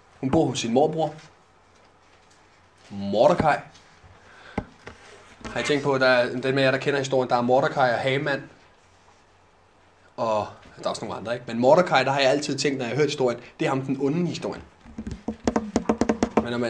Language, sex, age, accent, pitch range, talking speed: Danish, male, 20-39, native, 120-165 Hz, 175 wpm